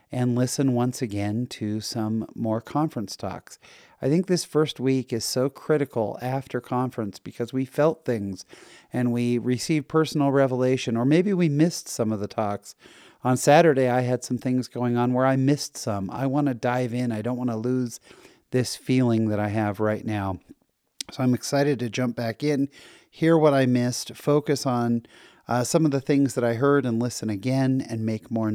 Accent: American